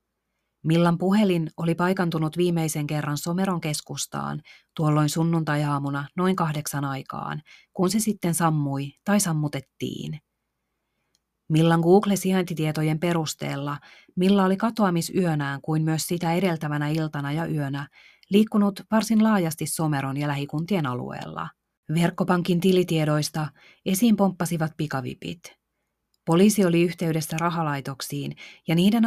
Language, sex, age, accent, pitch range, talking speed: Finnish, female, 30-49, native, 150-180 Hz, 105 wpm